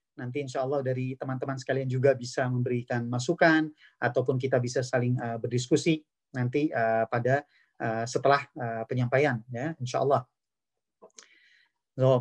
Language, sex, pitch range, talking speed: Indonesian, male, 130-160 Hz, 130 wpm